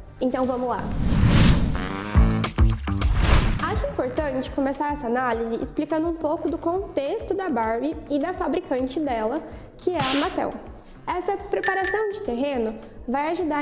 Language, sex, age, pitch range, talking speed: Portuguese, female, 10-29, 260-340 Hz, 130 wpm